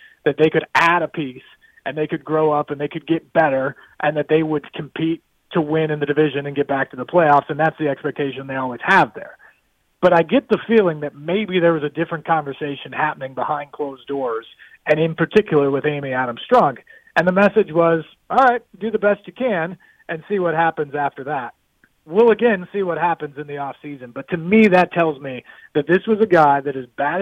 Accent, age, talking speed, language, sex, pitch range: American, 40-59, 225 wpm, English, male, 145-180 Hz